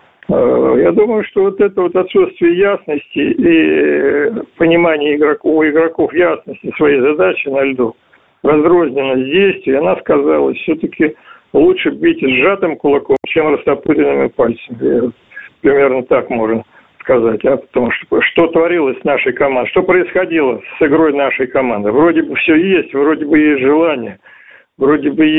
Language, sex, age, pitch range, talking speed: Russian, male, 60-79, 130-200 Hz, 135 wpm